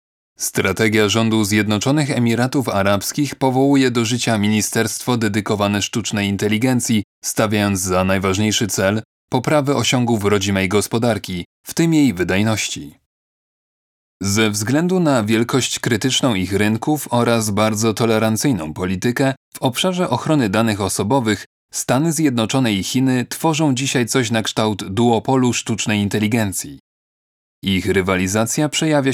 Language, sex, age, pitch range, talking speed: Polish, male, 30-49, 105-135 Hz, 115 wpm